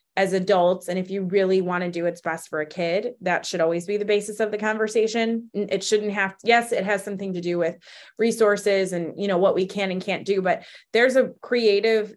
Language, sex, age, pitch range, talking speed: English, female, 20-39, 175-215 Hz, 230 wpm